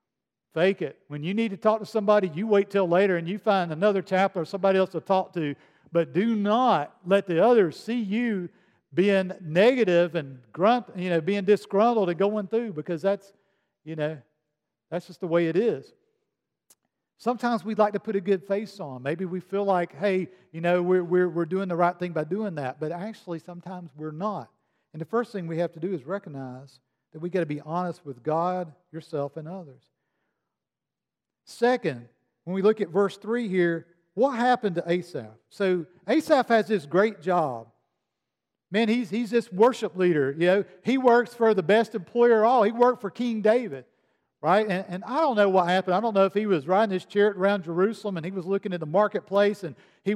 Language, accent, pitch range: English, American, 170-210 Hz